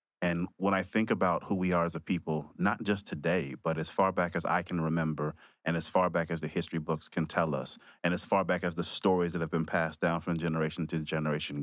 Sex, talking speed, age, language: male, 255 wpm, 30-49, English